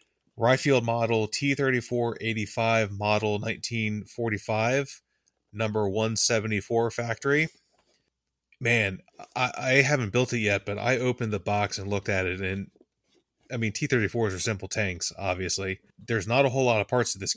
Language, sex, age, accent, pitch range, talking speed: English, male, 20-39, American, 100-115 Hz, 140 wpm